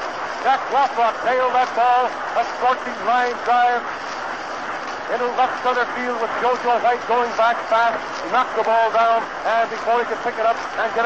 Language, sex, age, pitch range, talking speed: English, male, 60-79, 205-245 Hz, 180 wpm